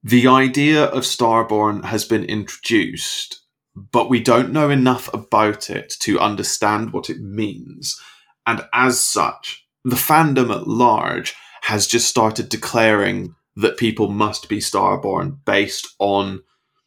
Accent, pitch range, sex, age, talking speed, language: British, 100-130 Hz, male, 20-39, 130 wpm, English